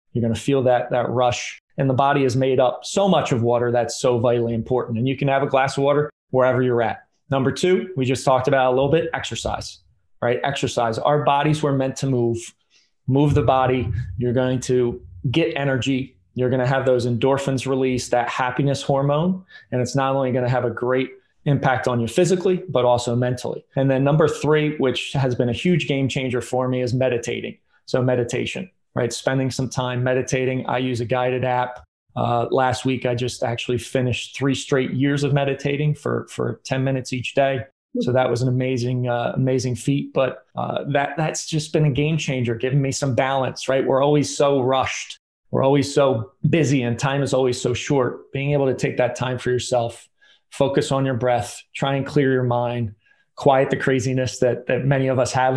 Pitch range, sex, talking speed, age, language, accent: 125-140 Hz, male, 205 wpm, 30-49, English, American